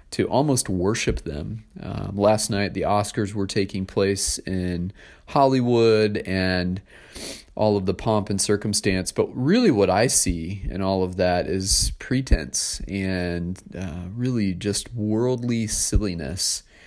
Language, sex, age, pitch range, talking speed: English, male, 30-49, 90-105 Hz, 135 wpm